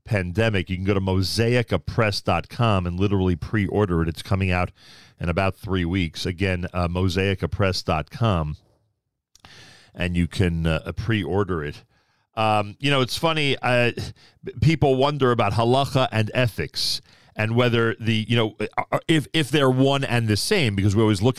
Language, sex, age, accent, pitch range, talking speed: English, male, 40-59, American, 100-125 Hz, 155 wpm